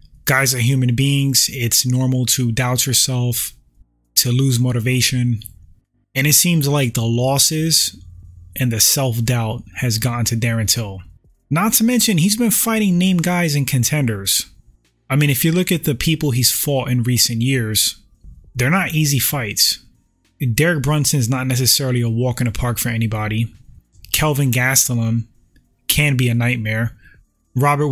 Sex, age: male, 20-39